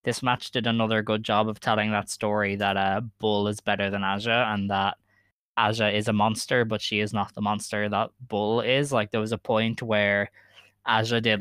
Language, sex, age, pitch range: English, male, 10-29, 105-110 Hz